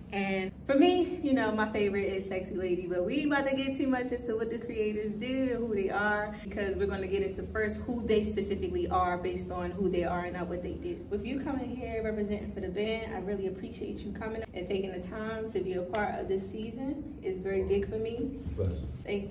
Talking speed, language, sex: 240 wpm, English, female